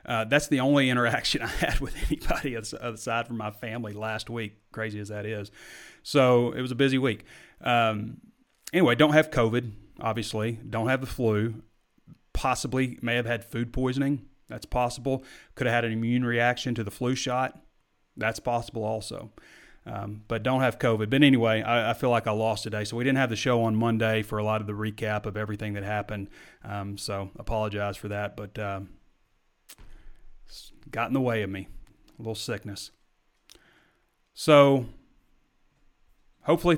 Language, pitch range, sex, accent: English, 105-130 Hz, male, American